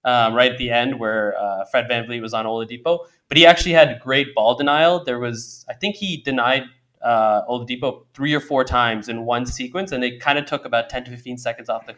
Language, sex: English, male